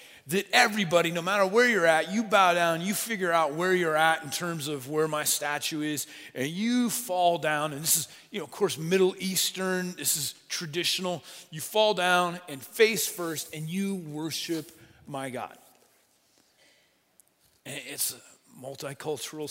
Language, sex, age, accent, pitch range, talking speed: English, male, 40-59, American, 145-190 Hz, 165 wpm